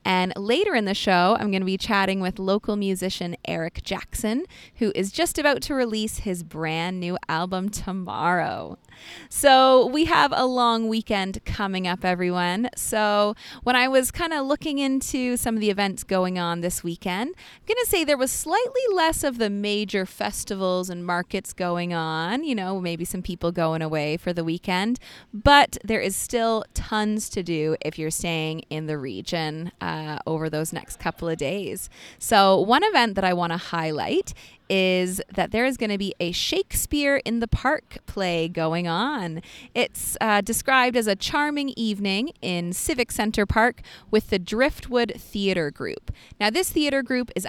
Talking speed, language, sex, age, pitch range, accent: 175 wpm, English, female, 20-39, 175-240 Hz, American